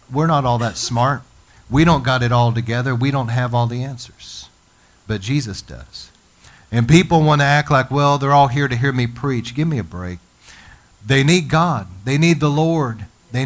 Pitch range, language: 115-145 Hz, English